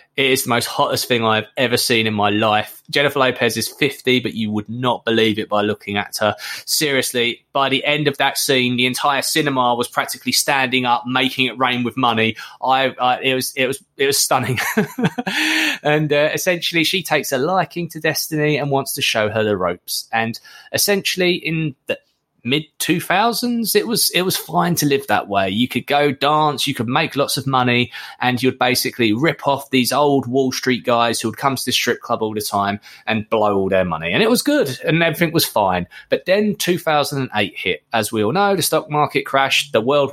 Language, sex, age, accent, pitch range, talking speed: English, male, 20-39, British, 115-150 Hz, 210 wpm